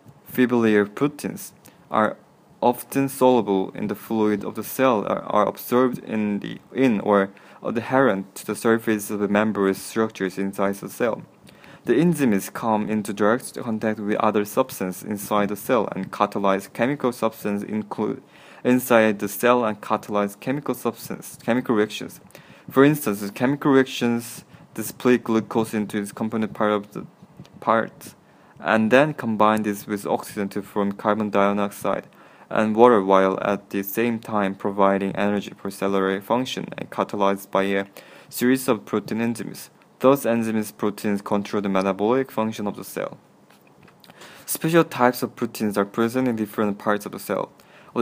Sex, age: male, 20-39